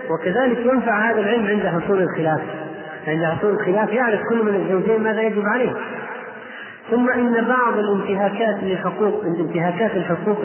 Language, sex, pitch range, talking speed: Arabic, male, 175-210 Hz, 130 wpm